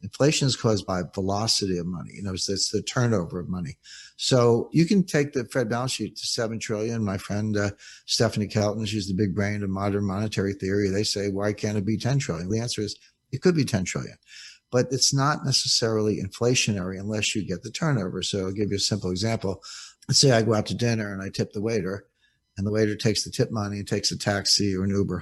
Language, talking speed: English, 230 wpm